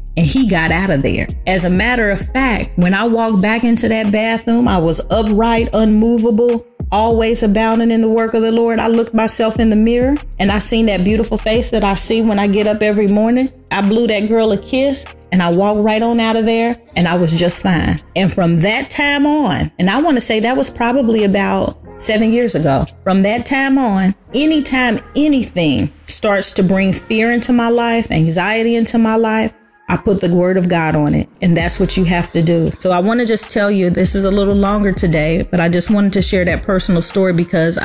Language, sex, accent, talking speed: English, female, American, 225 wpm